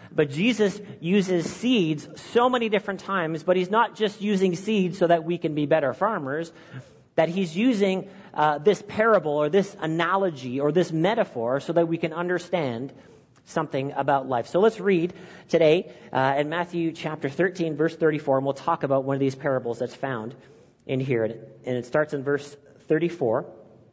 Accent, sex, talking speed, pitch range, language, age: American, male, 175 wpm, 145-195 Hz, English, 40-59